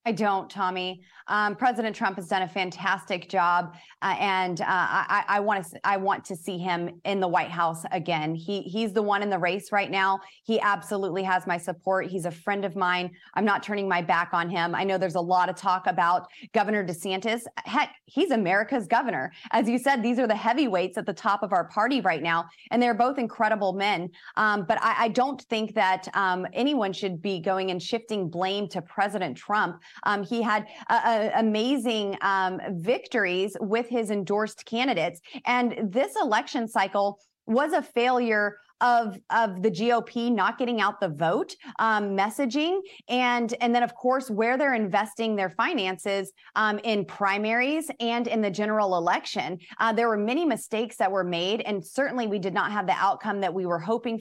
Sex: female